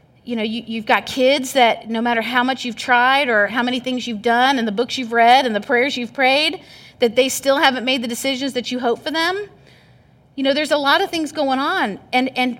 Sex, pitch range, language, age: female, 245-295 Hz, English, 30-49